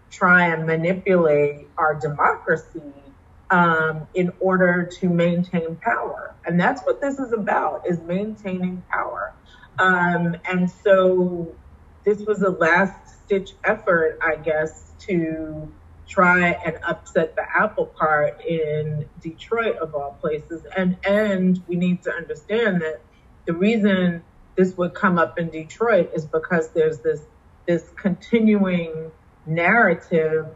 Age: 30-49